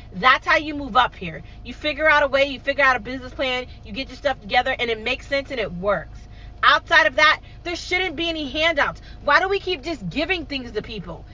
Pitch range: 255-335 Hz